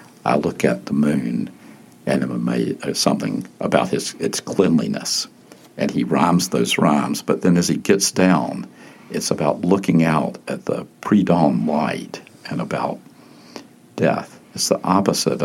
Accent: American